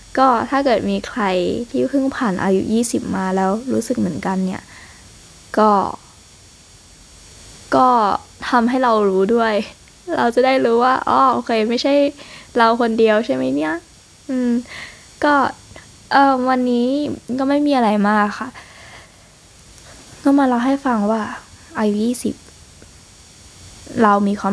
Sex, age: female, 10-29